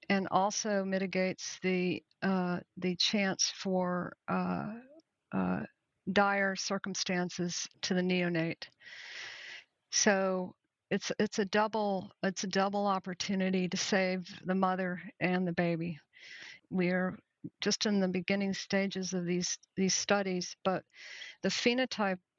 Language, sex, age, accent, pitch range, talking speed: English, female, 50-69, American, 175-195 Hz, 120 wpm